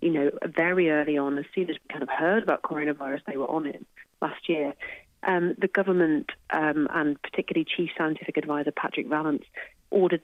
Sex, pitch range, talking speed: female, 160-190 Hz, 190 wpm